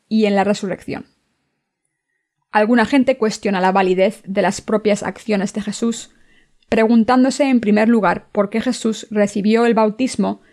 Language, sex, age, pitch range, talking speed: Spanish, female, 20-39, 195-230 Hz, 140 wpm